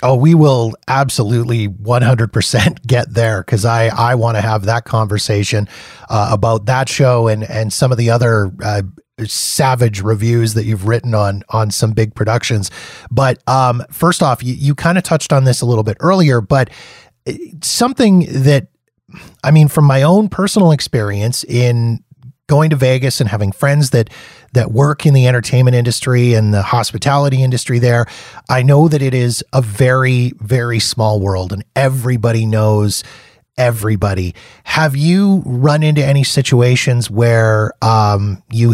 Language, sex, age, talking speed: English, male, 30-49, 160 wpm